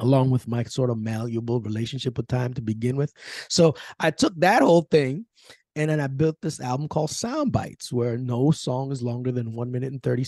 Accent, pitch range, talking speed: American, 115-140 Hz, 215 wpm